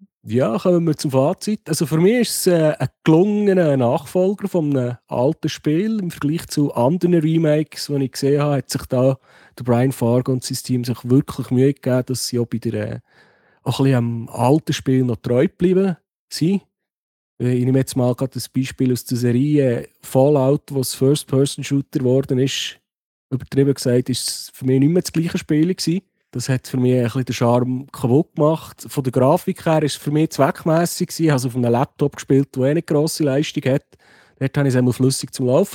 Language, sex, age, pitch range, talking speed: German, male, 40-59, 125-155 Hz, 200 wpm